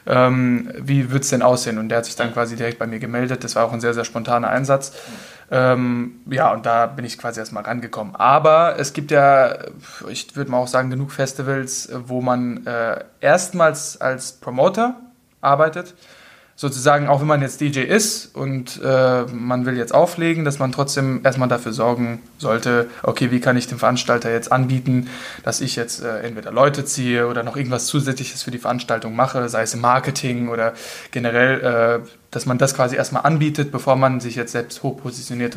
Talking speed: 190 wpm